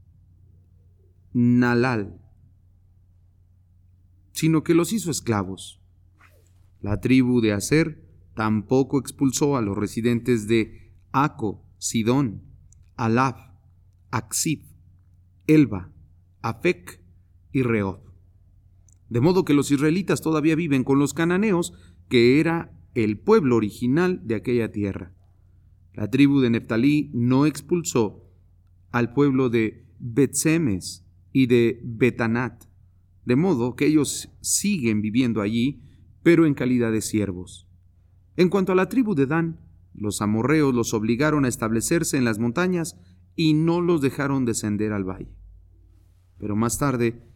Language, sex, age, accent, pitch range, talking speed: English, male, 40-59, Mexican, 90-135 Hz, 120 wpm